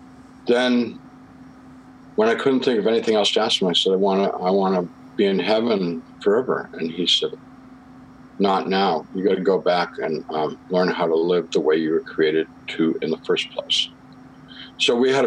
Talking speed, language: 205 wpm, English